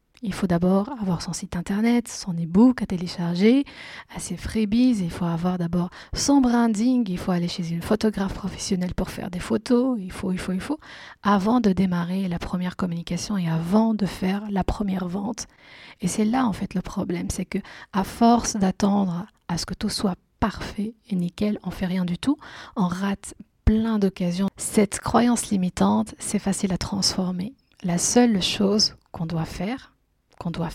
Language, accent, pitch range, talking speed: French, French, 185-220 Hz, 180 wpm